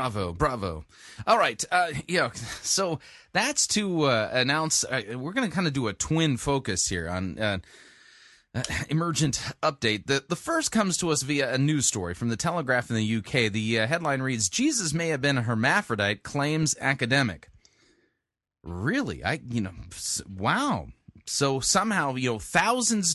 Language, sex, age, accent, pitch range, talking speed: English, male, 30-49, American, 110-160 Hz, 175 wpm